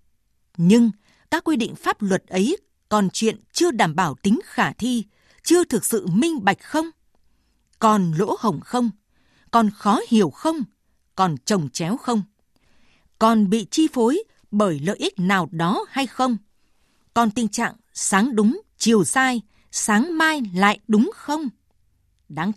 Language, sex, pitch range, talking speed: Vietnamese, female, 180-240 Hz, 150 wpm